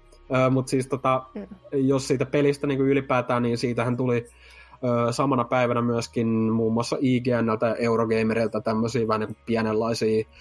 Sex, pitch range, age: male, 105-120 Hz, 20-39